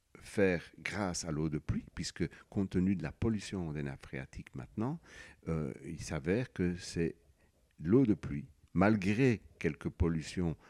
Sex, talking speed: male, 150 wpm